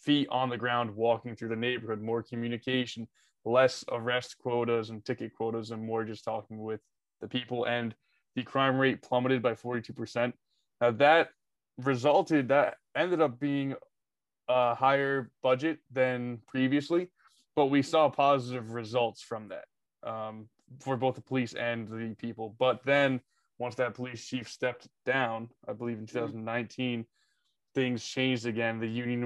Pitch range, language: 115-130 Hz, English